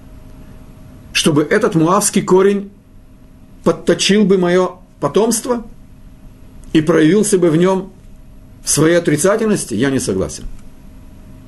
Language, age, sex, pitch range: Russian, 50-69, male, 145-195 Hz